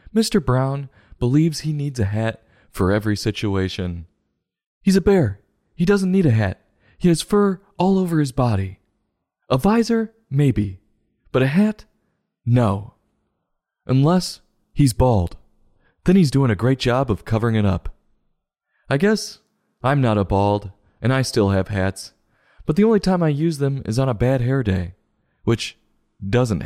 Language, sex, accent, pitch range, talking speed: English, male, American, 105-150 Hz, 160 wpm